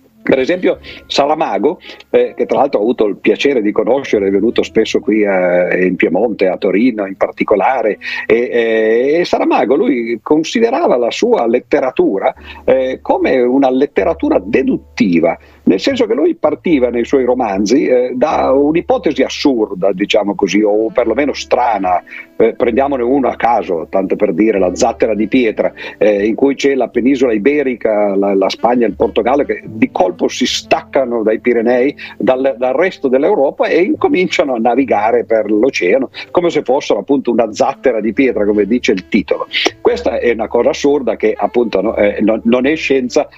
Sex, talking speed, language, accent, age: male, 165 wpm, Italian, native, 50-69